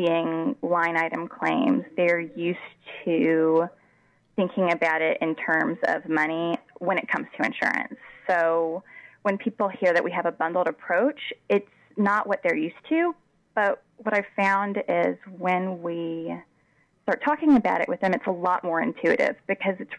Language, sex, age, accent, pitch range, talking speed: English, female, 20-39, American, 165-220 Hz, 160 wpm